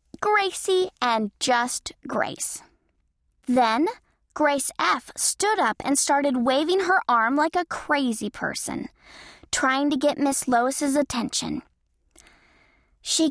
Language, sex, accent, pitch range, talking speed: English, female, American, 230-310 Hz, 115 wpm